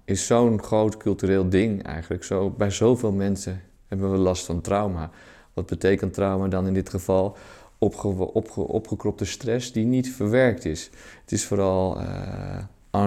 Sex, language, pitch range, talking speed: male, Dutch, 90-110 Hz, 140 wpm